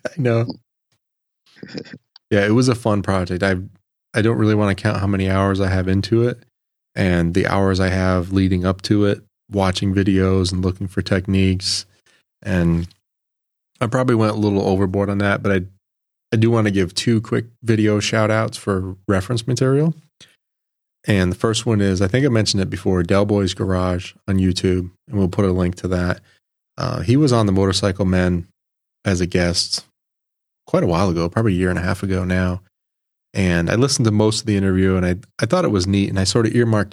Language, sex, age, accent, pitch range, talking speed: English, male, 30-49, American, 95-110 Hz, 205 wpm